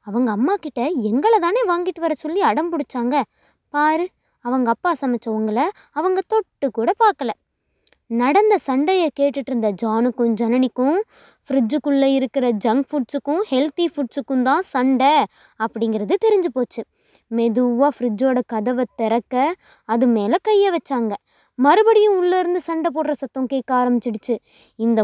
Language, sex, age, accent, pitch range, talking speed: Tamil, female, 20-39, native, 235-330 Hz, 120 wpm